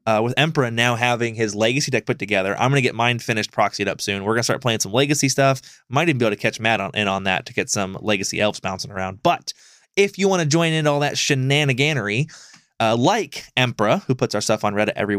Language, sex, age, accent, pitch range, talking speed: English, male, 20-39, American, 110-145 Hz, 255 wpm